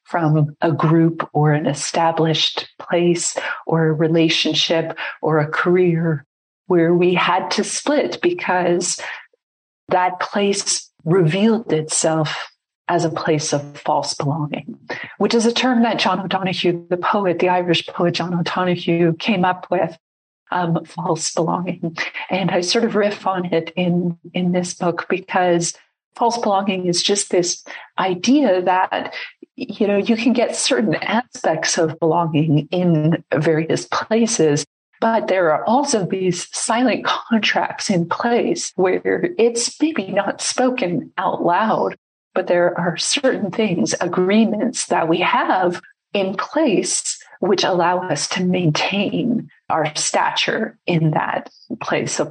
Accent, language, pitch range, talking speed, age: American, English, 165-205 Hz, 135 wpm, 40-59